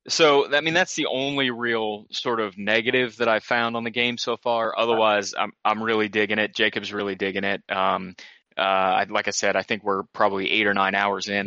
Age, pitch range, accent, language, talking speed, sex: 20-39, 100-120 Hz, American, English, 225 wpm, male